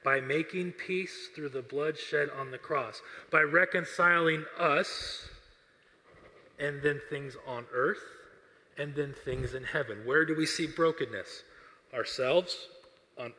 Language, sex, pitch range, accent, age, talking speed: English, male, 145-180 Hz, American, 30-49, 135 wpm